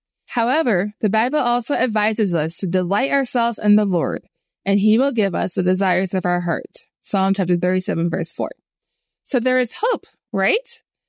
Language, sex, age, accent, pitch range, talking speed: English, female, 20-39, American, 190-245 Hz, 175 wpm